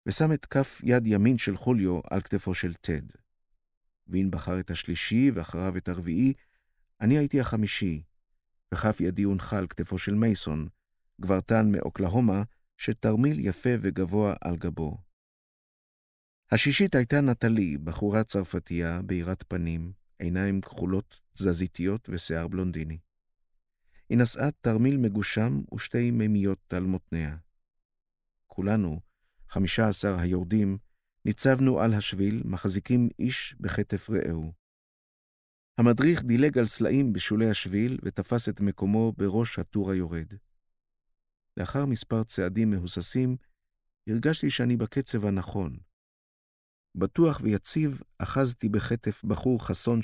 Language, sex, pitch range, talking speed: Hebrew, male, 90-115 Hz, 110 wpm